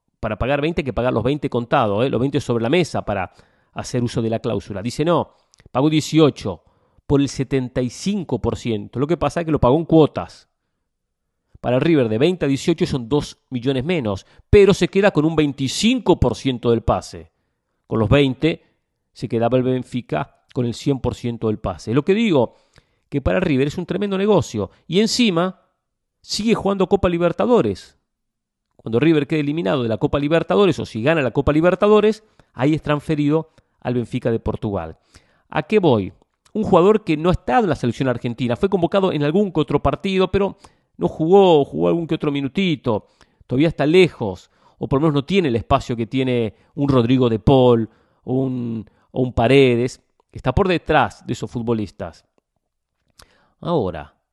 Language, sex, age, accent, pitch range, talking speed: English, male, 40-59, Argentinian, 115-165 Hz, 180 wpm